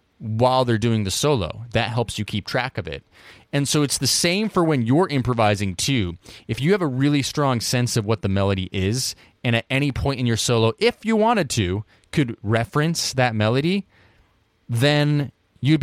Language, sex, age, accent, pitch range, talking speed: English, male, 30-49, American, 95-125 Hz, 195 wpm